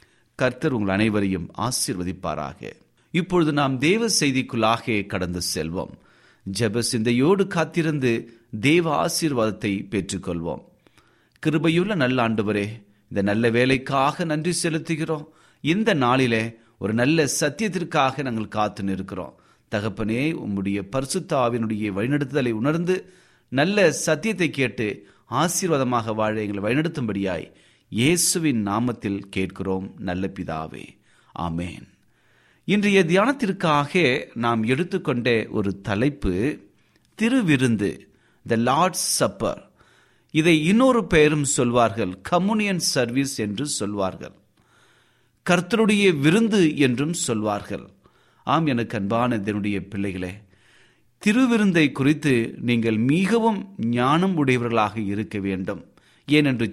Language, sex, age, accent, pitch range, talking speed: Tamil, male, 30-49, native, 105-160 Hz, 90 wpm